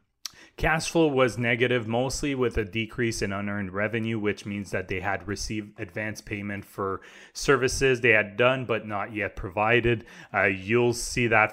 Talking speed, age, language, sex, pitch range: 165 wpm, 30-49, English, male, 95-115 Hz